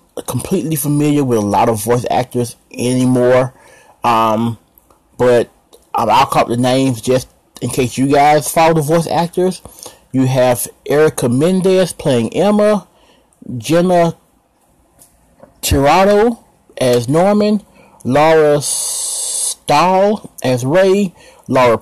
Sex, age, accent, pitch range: male, 30-49, American, 130-190 Hz